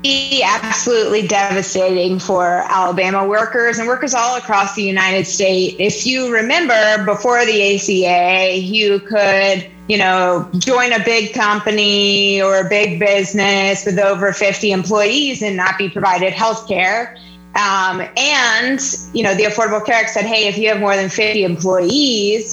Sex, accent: female, American